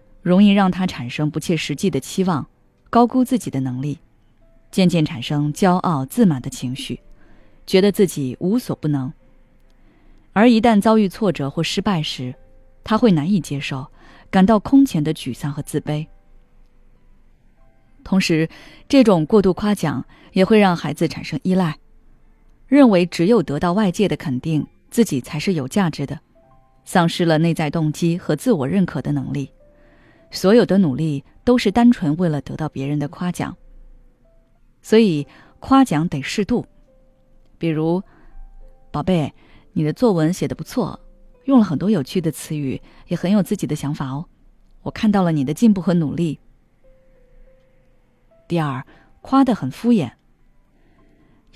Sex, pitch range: female, 135-195 Hz